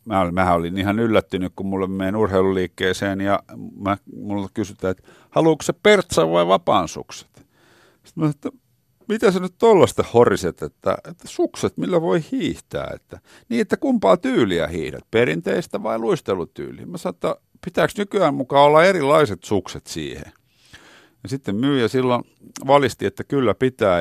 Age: 50-69